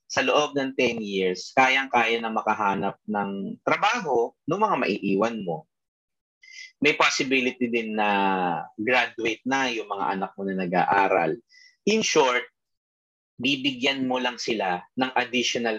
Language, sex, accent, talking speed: Filipino, male, native, 130 wpm